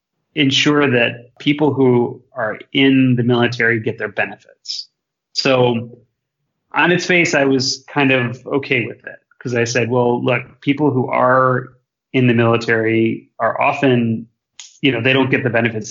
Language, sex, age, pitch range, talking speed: English, male, 30-49, 115-140 Hz, 160 wpm